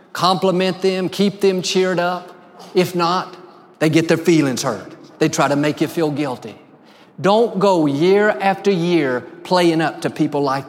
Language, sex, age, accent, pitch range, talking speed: English, male, 50-69, American, 155-210 Hz, 170 wpm